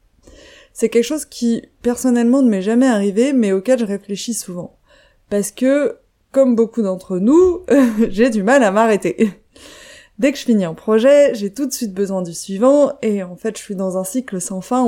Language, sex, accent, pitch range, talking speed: French, female, French, 190-255 Hz, 195 wpm